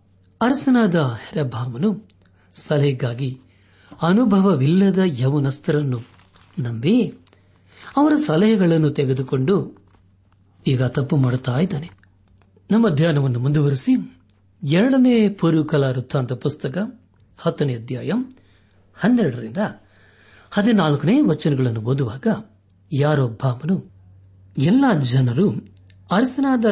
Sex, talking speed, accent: male, 65 wpm, native